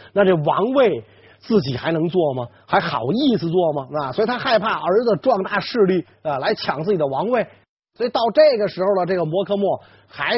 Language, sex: Chinese, male